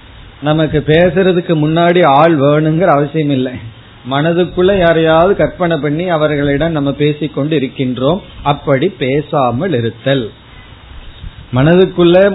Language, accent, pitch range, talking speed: Tamil, native, 130-170 Hz, 95 wpm